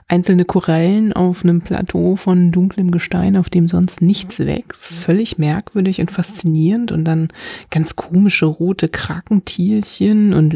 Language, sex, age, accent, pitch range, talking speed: German, female, 30-49, German, 165-205 Hz, 135 wpm